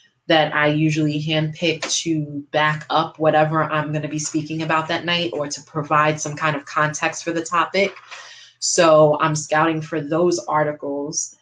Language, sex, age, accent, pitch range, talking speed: English, female, 20-39, American, 145-160 Hz, 165 wpm